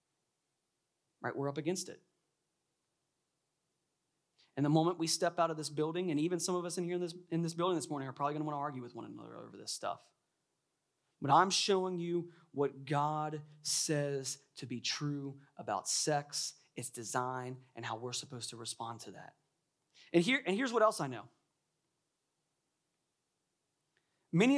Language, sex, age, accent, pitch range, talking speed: English, male, 30-49, American, 150-200 Hz, 165 wpm